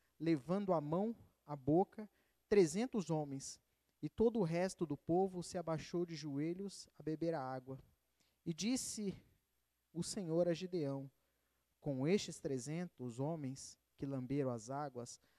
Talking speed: 135 wpm